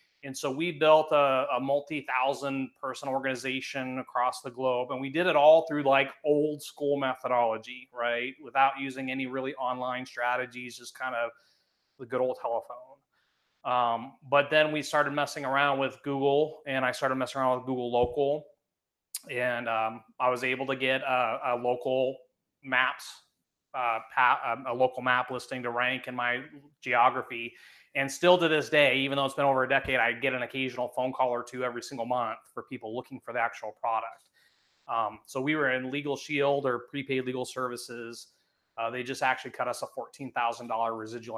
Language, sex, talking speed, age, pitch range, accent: English, male, 180 wpm, 30-49, 125-140 Hz, American